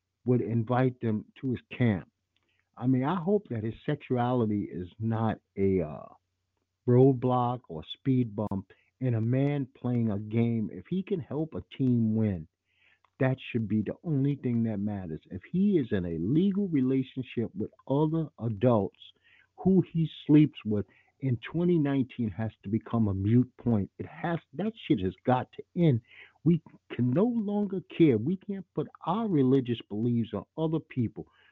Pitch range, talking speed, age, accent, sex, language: 110-150 Hz, 165 wpm, 50-69, American, male, English